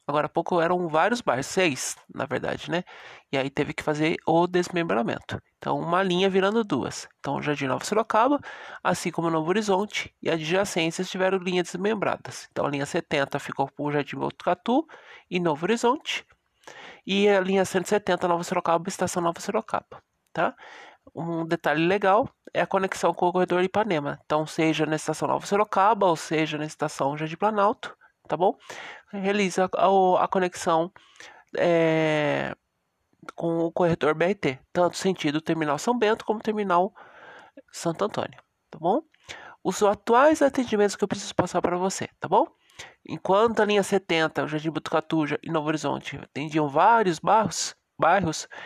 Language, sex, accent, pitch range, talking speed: Portuguese, male, Brazilian, 160-200 Hz, 155 wpm